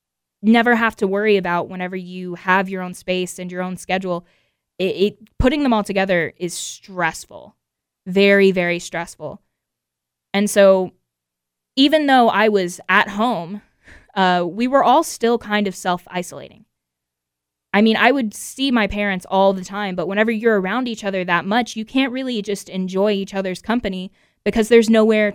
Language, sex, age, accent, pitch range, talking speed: English, female, 20-39, American, 180-220 Hz, 170 wpm